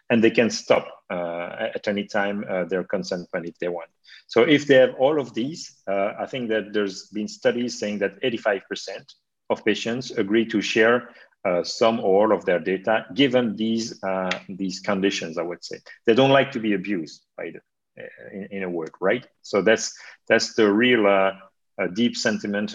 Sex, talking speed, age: male, 205 wpm, 40-59